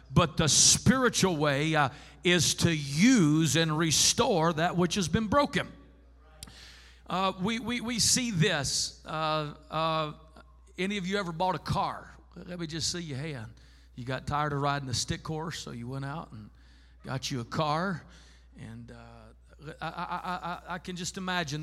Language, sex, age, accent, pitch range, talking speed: English, male, 50-69, American, 130-180 Hz, 170 wpm